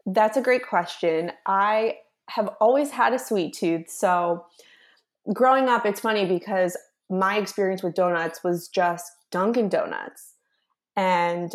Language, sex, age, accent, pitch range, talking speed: English, female, 20-39, American, 180-220 Hz, 135 wpm